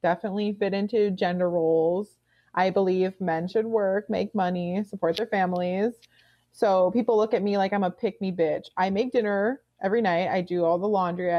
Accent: American